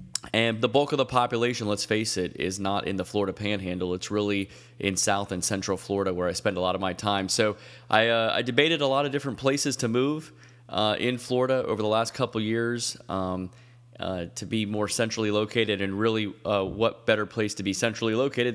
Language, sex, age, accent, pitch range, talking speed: English, male, 20-39, American, 100-120 Hz, 215 wpm